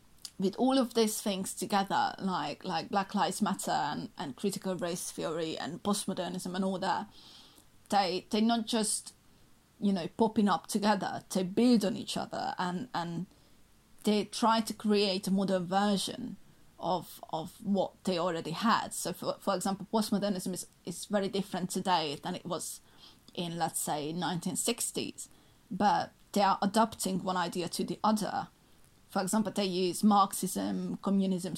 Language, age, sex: English, 30-49, female